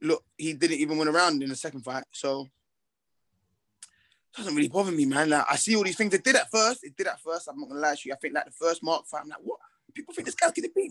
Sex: male